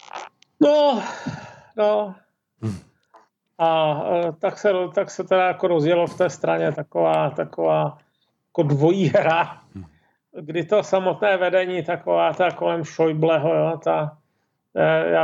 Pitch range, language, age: 130-180 Hz, Czech, 40-59